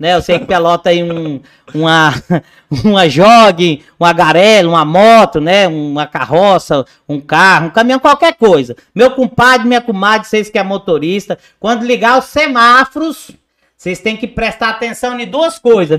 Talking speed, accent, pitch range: 165 wpm, Brazilian, 180-245 Hz